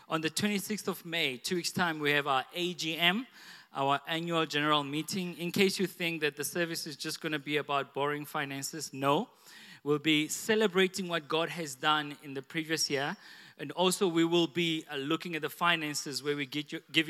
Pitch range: 150-185 Hz